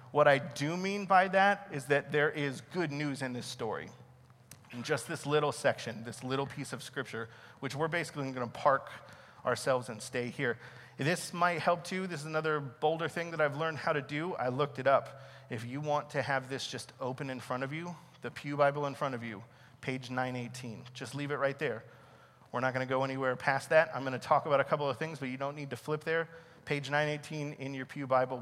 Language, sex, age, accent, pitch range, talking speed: English, male, 40-59, American, 125-150 Hz, 230 wpm